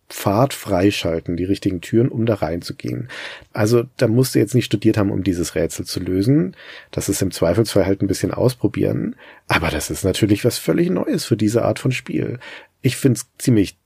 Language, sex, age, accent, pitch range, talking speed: German, male, 40-59, German, 100-125 Hz, 190 wpm